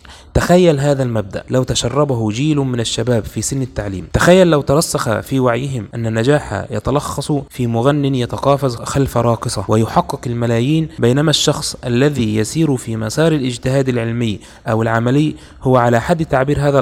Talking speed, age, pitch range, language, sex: 145 wpm, 20-39, 115-145 Hz, Arabic, male